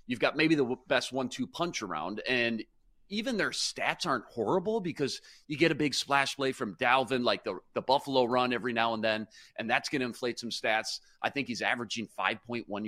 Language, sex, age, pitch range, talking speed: English, male, 40-59, 110-135 Hz, 210 wpm